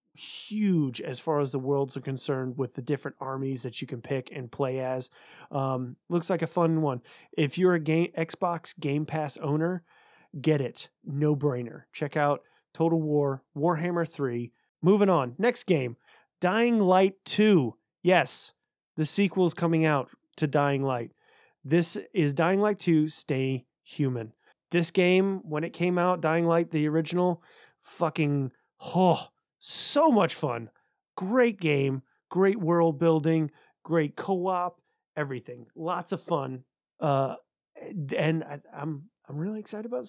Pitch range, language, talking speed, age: 140-175 Hz, English, 145 wpm, 30-49